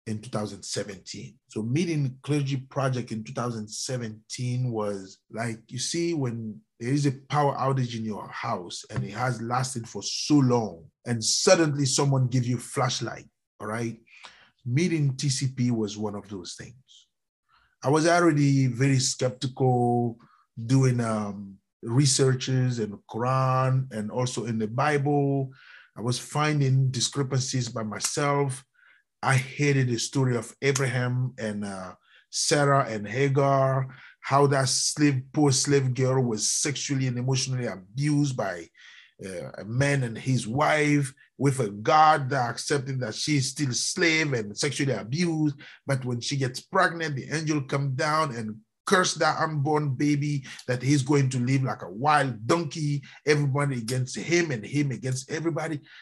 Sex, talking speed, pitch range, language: male, 145 wpm, 120-145 Hz, English